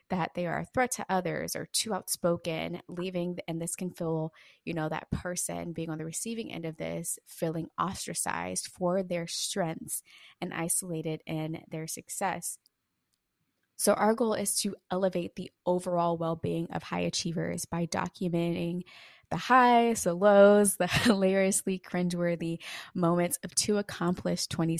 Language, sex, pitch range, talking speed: English, female, 160-185 Hz, 150 wpm